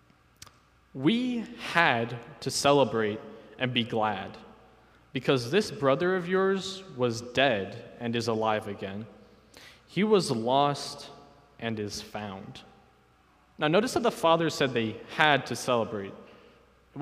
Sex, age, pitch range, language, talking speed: male, 20-39, 110-155 Hz, English, 125 wpm